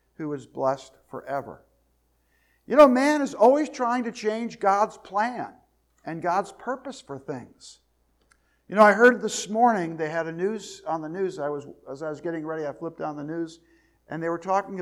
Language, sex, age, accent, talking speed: English, male, 50-69, American, 195 wpm